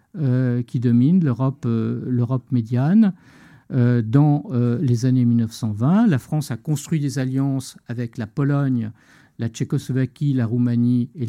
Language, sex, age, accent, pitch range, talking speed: French, male, 50-69, French, 120-155 Hz, 145 wpm